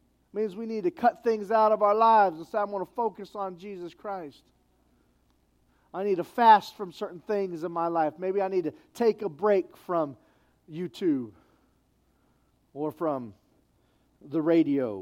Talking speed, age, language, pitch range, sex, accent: 170 wpm, 40-59, English, 135-210 Hz, male, American